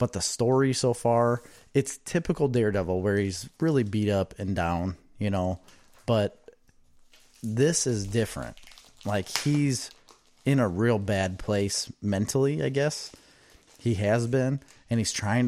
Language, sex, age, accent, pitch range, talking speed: English, male, 30-49, American, 95-120 Hz, 145 wpm